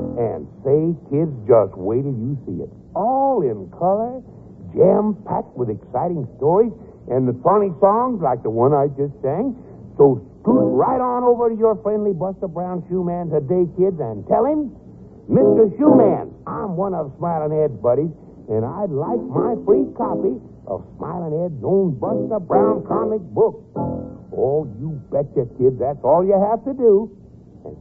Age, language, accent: 60-79, English, American